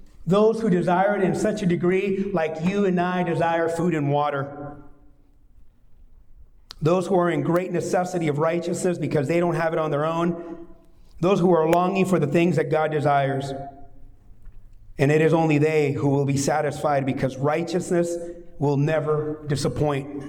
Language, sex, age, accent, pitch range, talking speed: English, male, 40-59, American, 160-195 Hz, 165 wpm